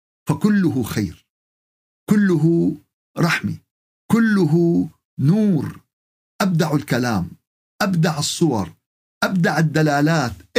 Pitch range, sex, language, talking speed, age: 155-195 Hz, male, Arabic, 70 wpm, 50-69